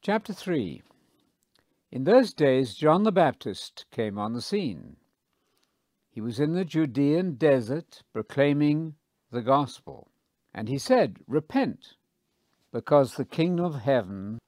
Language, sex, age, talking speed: English, male, 60-79, 125 wpm